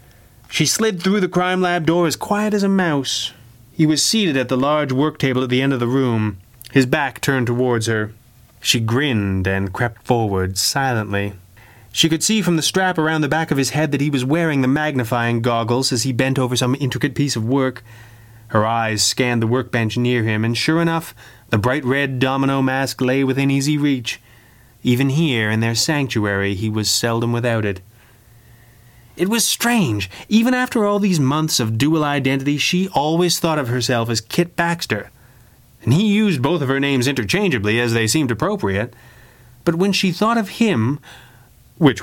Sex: male